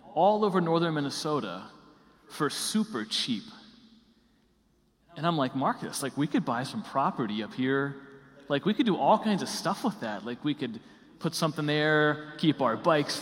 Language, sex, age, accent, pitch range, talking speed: English, male, 30-49, American, 140-200 Hz, 175 wpm